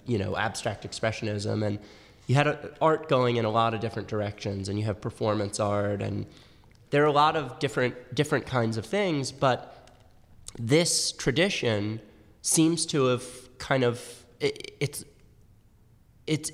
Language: English